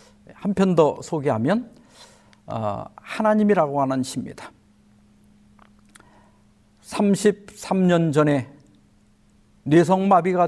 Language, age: Korean, 50-69